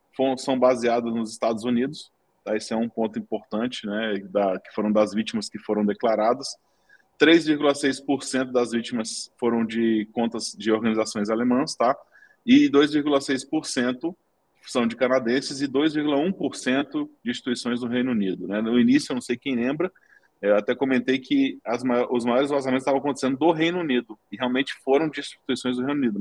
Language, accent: Portuguese, Brazilian